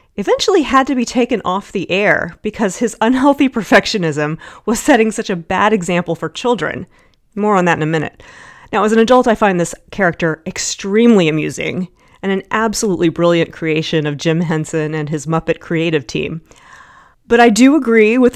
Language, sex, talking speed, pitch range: English, female, 175 wpm, 165-225 Hz